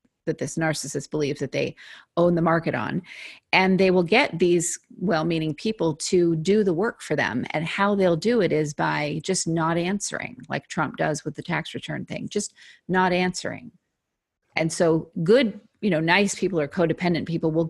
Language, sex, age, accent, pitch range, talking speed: English, female, 40-59, American, 155-190 Hz, 185 wpm